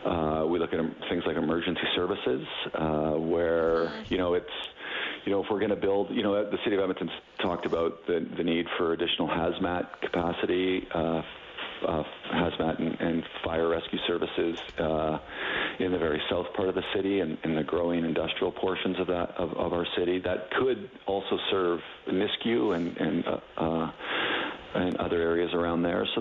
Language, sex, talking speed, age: English, male, 175 wpm, 50-69